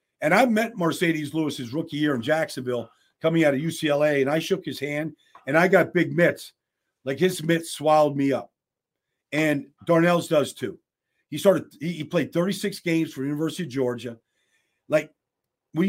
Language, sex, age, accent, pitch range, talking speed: English, male, 50-69, American, 135-170 Hz, 175 wpm